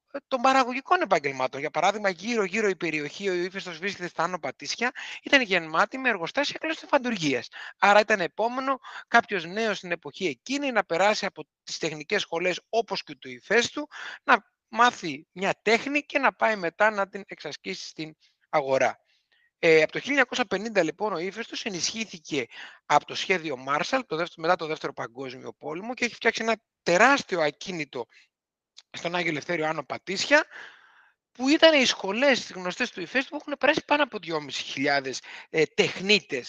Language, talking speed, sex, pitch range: Greek, 150 wpm, male, 160-250 Hz